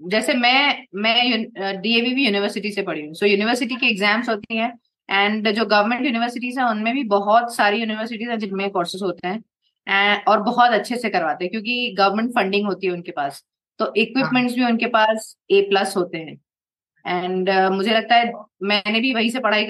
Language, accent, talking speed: Hindi, native, 190 wpm